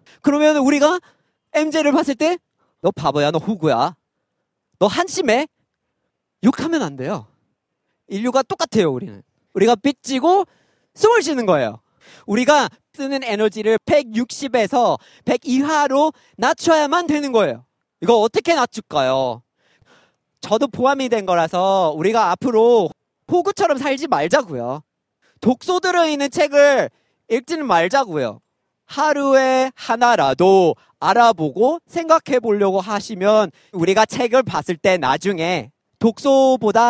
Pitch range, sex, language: 185-280 Hz, male, Korean